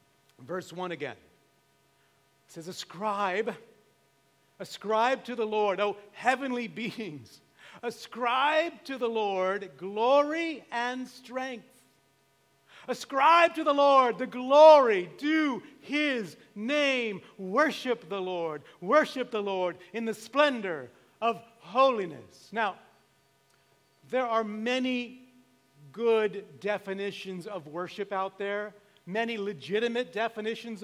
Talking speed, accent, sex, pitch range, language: 105 wpm, American, male, 180-240 Hz, English